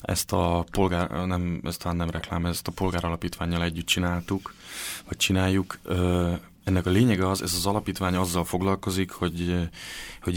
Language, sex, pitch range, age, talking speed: Hungarian, male, 85-95 Hz, 20-39, 145 wpm